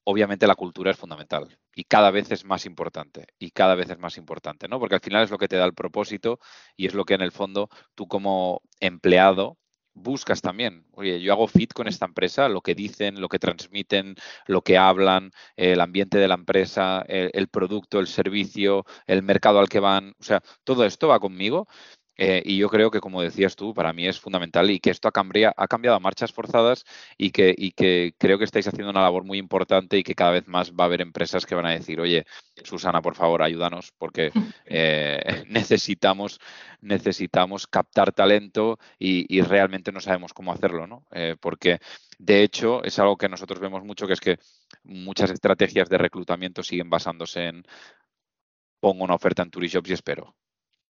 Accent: Spanish